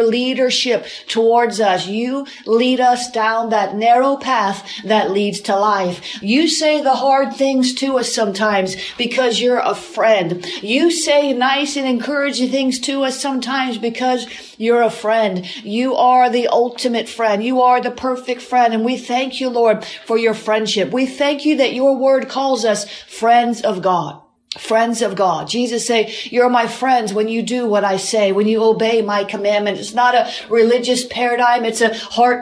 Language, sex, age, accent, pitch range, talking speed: English, female, 40-59, American, 225-270 Hz, 175 wpm